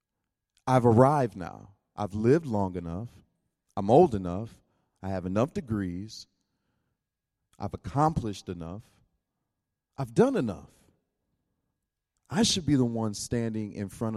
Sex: male